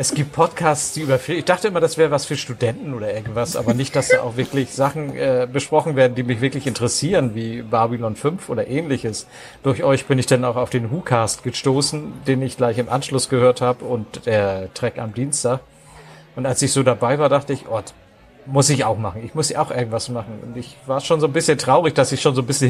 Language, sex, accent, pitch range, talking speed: German, male, German, 120-140 Hz, 240 wpm